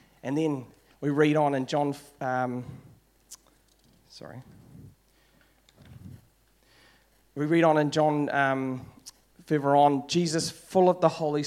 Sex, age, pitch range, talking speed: male, 40-59, 125-155 Hz, 115 wpm